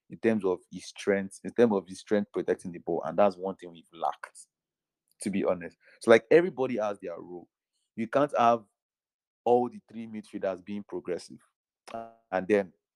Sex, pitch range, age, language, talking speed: male, 95-115 Hz, 30-49, English, 180 wpm